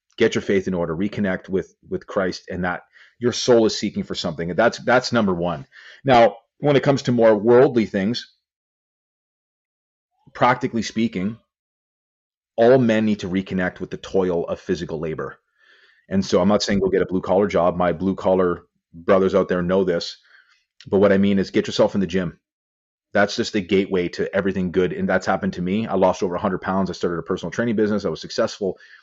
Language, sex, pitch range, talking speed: English, male, 95-115 Hz, 200 wpm